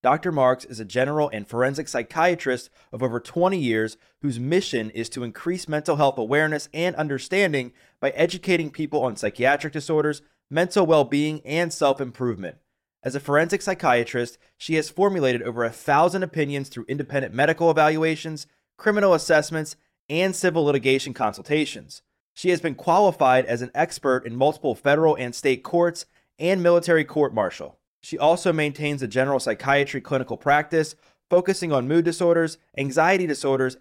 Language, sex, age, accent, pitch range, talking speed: English, male, 30-49, American, 130-165 Hz, 150 wpm